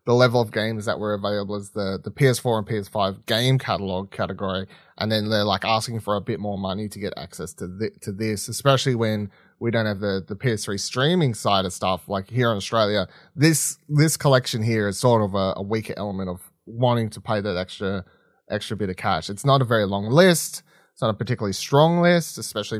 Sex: male